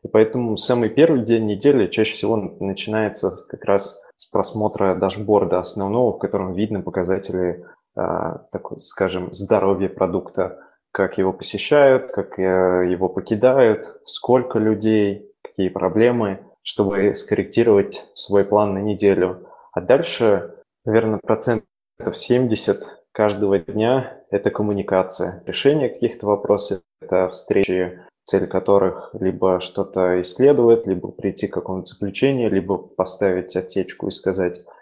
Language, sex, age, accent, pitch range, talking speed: Russian, male, 20-39, native, 95-115 Hz, 115 wpm